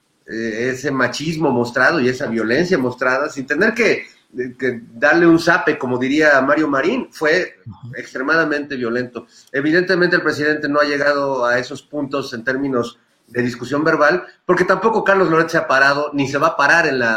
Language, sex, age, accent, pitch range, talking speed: Spanish, male, 40-59, Mexican, 125-160 Hz, 170 wpm